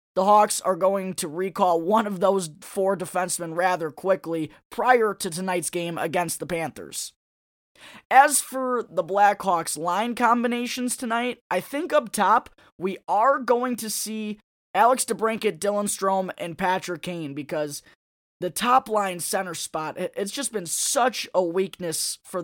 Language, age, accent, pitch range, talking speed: English, 20-39, American, 170-220 Hz, 145 wpm